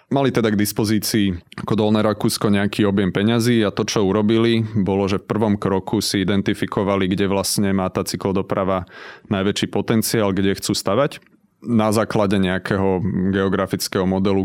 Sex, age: male, 30-49